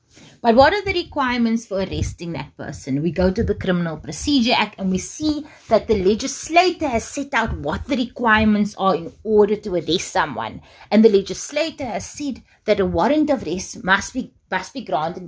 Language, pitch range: English, 185-255 Hz